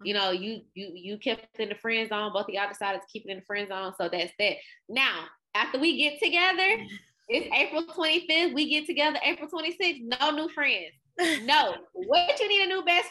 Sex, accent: female, American